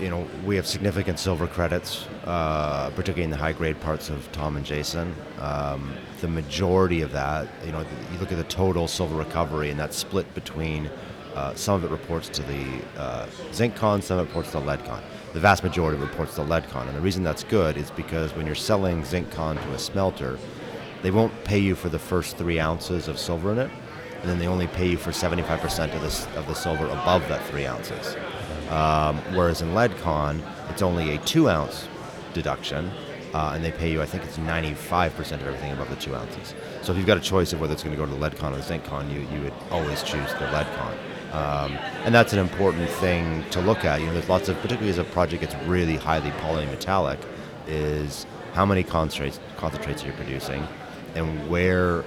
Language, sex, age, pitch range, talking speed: English, male, 30-49, 75-90 Hz, 220 wpm